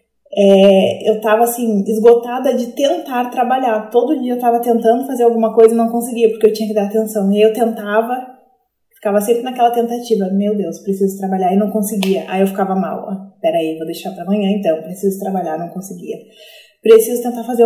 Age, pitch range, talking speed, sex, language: 20-39, 210-245 Hz, 195 wpm, female, Portuguese